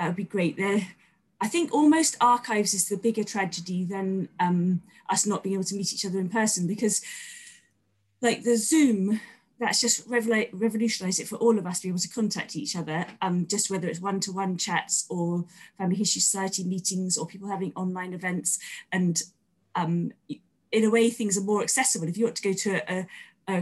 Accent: British